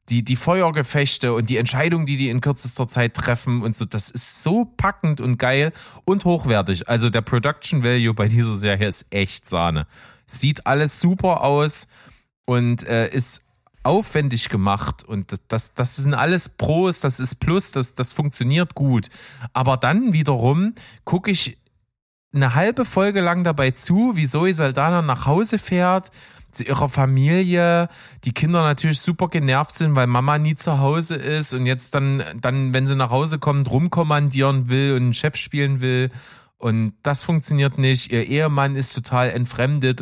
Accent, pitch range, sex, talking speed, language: German, 120-150 Hz, male, 165 wpm, German